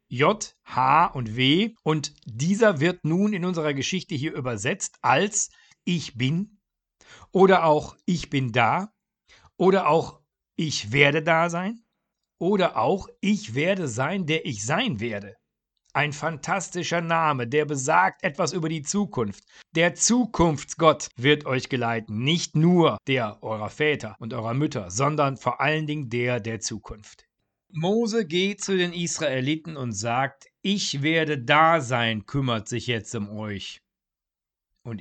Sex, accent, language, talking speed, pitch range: male, German, German, 140 wpm, 125-175 Hz